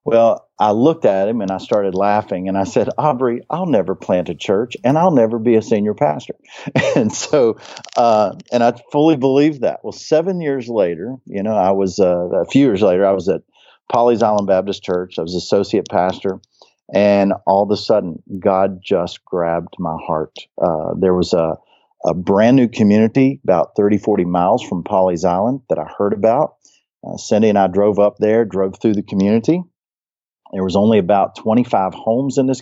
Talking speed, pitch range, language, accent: 195 wpm, 95-120 Hz, English, American